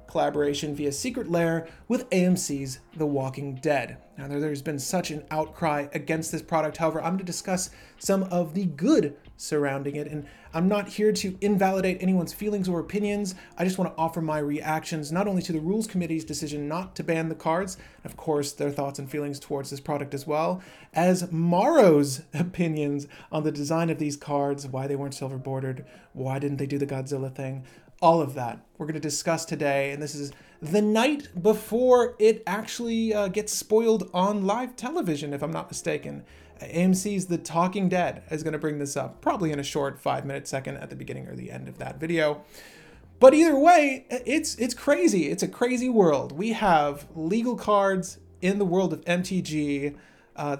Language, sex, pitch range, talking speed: English, male, 145-190 Hz, 190 wpm